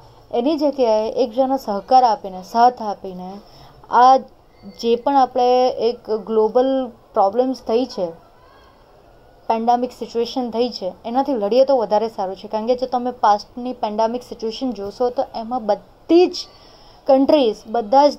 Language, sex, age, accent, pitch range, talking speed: Gujarati, female, 20-39, native, 210-250 Hz, 120 wpm